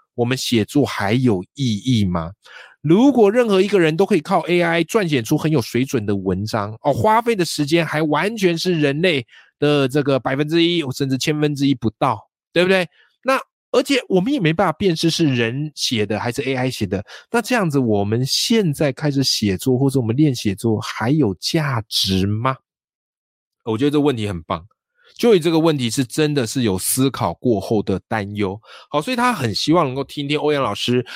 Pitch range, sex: 110-155 Hz, male